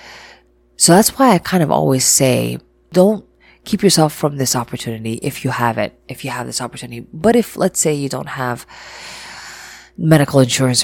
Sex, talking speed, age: female, 175 wpm, 30-49